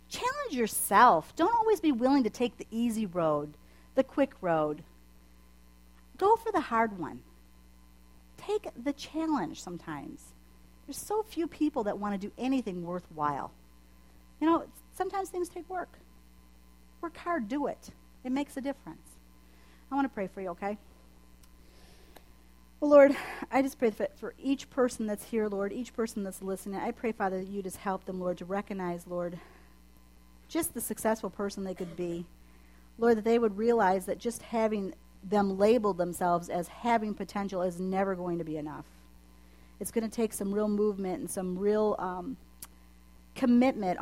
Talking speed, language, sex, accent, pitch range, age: 165 wpm, English, female, American, 155-230 Hz, 50-69